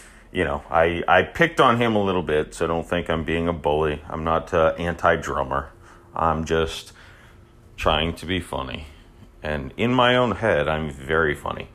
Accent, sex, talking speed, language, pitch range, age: American, male, 185 wpm, English, 80-105 Hz, 40-59